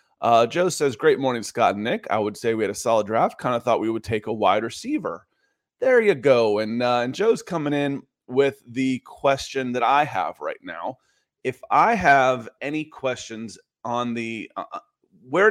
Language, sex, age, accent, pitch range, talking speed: English, male, 30-49, American, 115-145 Hz, 195 wpm